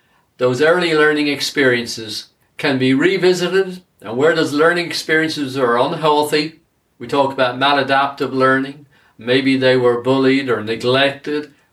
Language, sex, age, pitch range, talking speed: English, male, 50-69, 125-155 Hz, 130 wpm